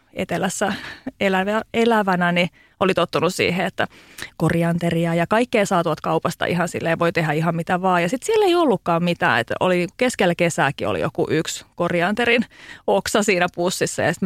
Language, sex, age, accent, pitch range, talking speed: Finnish, female, 30-49, native, 170-230 Hz, 170 wpm